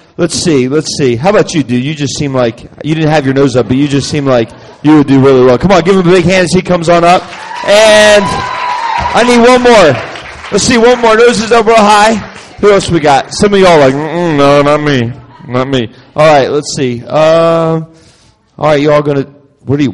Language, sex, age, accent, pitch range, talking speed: English, male, 30-49, American, 130-200 Hz, 235 wpm